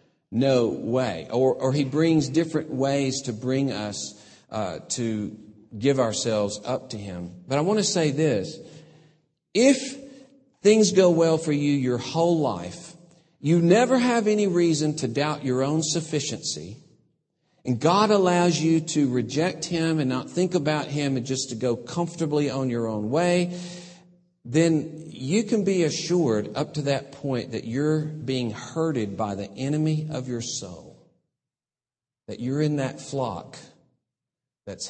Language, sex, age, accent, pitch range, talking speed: English, male, 50-69, American, 120-165 Hz, 155 wpm